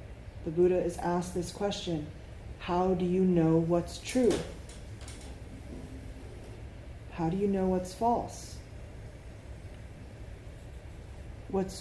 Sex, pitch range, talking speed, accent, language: female, 165-200 Hz, 95 wpm, American, English